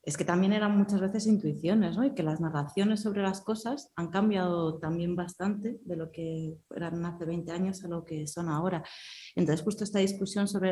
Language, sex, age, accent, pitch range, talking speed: Spanish, female, 30-49, Spanish, 150-175 Hz, 200 wpm